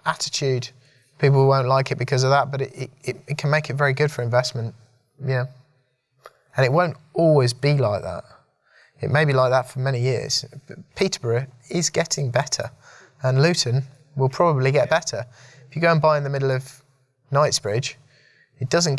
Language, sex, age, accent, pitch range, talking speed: English, male, 20-39, British, 115-140 Hz, 185 wpm